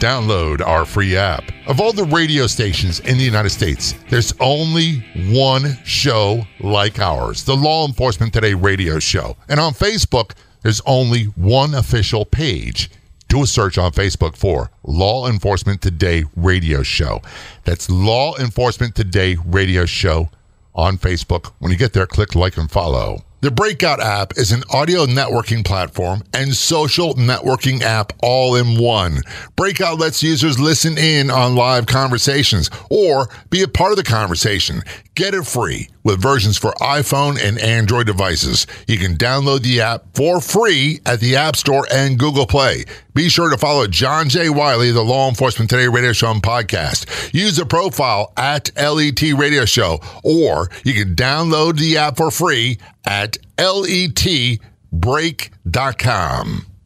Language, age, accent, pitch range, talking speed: English, 50-69, American, 100-140 Hz, 155 wpm